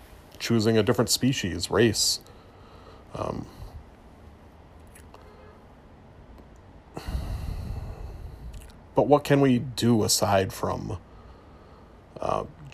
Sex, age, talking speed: male, 30-49, 65 wpm